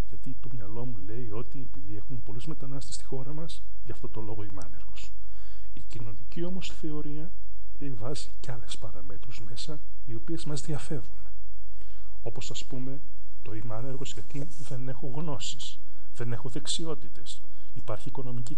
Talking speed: 150 wpm